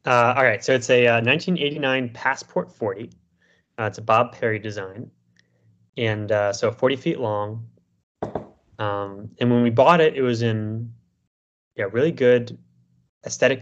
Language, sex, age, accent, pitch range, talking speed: English, male, 20-39, American, 100-120 Hz, 155 wpm